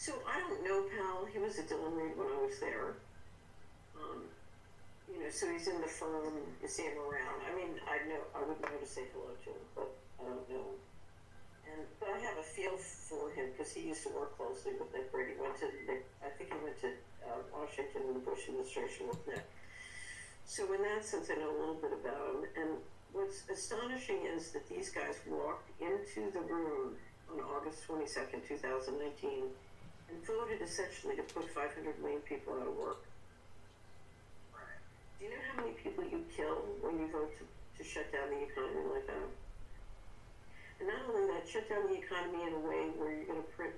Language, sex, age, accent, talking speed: English, female, 60-79, American, 195 wpm